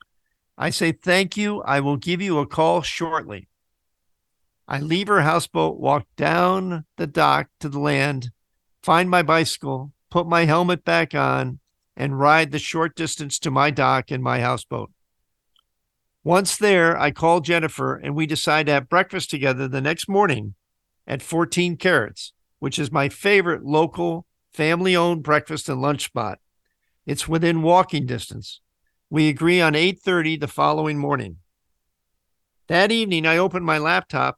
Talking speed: 150 wpm